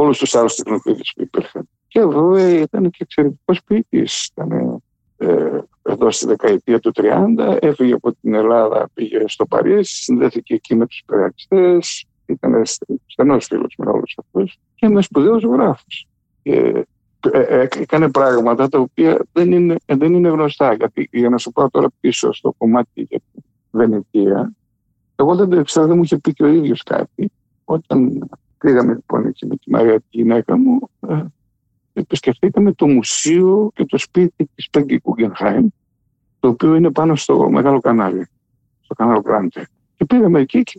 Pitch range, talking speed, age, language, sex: 130-220 Hz, 150 wpm, 60-79, Greek, male